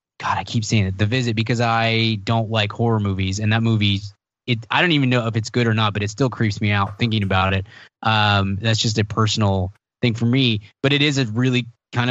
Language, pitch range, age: English, 105-130 Hz, 20-39